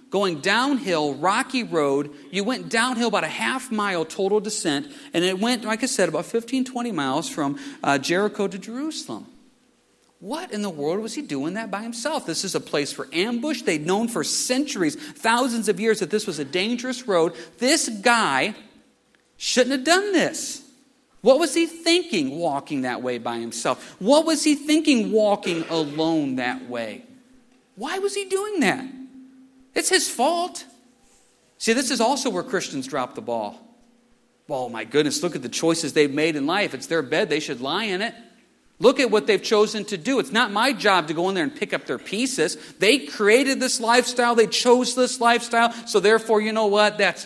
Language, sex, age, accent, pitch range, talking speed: English, male, 40-59, American, 180-255 Hz, 190 wpm